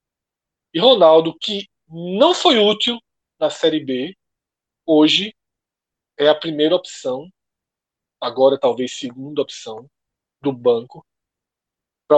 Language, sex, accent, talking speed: Portuguese, male, Brazilian, 105 wpm